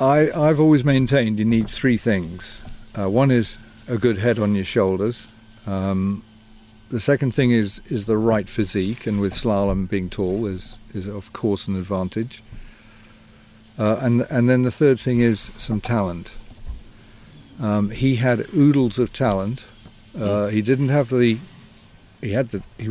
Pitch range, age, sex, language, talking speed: 100-120 Hz, 50-69, male, English, 160 wpm